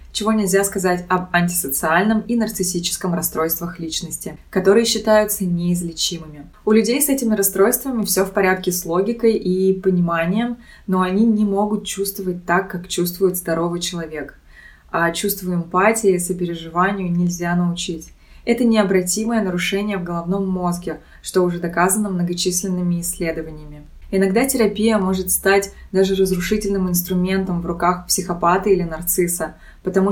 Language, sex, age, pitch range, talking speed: Russian, female, 20-39, 175-205 Hz, 130 wpm